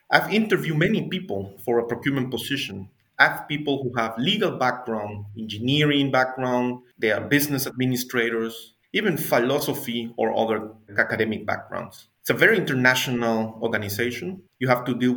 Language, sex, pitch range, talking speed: English, male, 115-145 Hz, 140 wpm